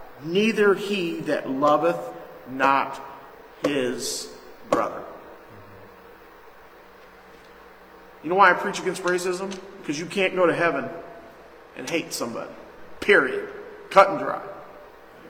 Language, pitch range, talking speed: English, 150-230 Hz, 105 wpm